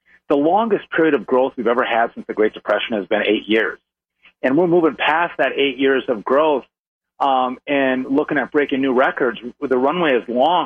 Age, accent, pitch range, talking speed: 40-59, American, 130-155 Hz, 205 wpm